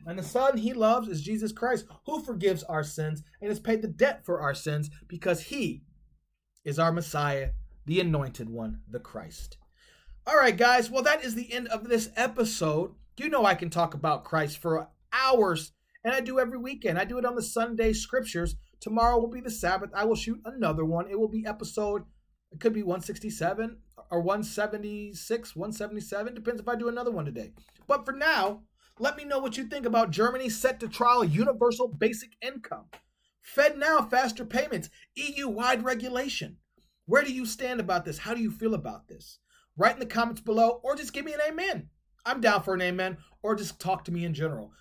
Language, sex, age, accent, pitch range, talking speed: English, male, 30-49, American, 180-245 Hz, 200 wpm